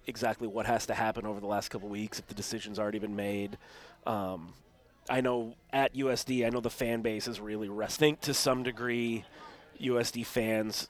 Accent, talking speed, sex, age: American, 185 wpm, male, 30-49